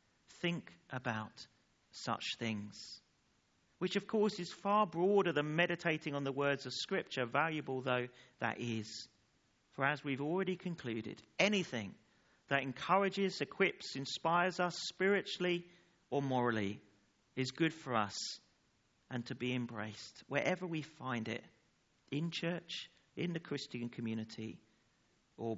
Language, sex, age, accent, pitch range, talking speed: English, male, 40-59, British, 120-170 Hz, 125 wpm